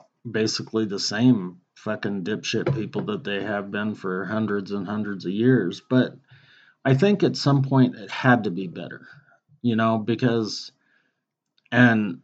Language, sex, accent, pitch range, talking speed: English, male, American, 110-130 Hz, 150 wpm